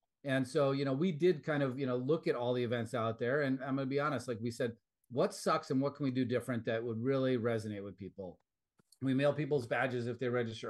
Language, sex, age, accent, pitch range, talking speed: English, male, 40-59, American, 120-145 Hz, 265 wpm